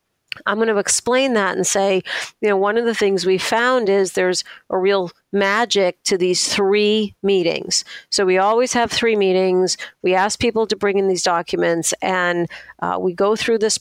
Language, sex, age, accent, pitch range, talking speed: English, female, 50-69, American, 185-220 Hz, 190 wpm